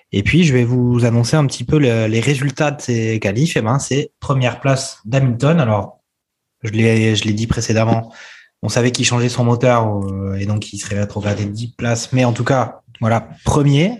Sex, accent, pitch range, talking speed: male, French, 115-140 Hz, 210 wpm